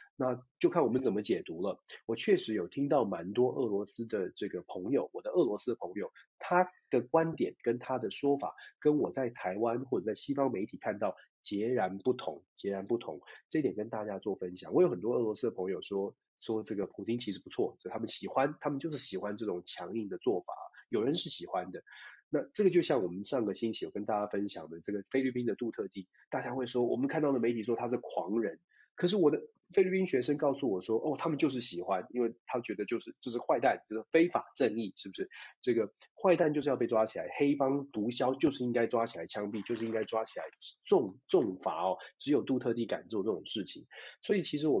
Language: Chinese